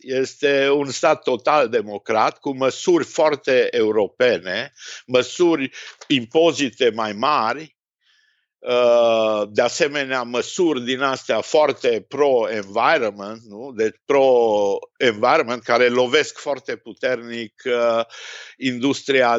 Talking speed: 85 wpm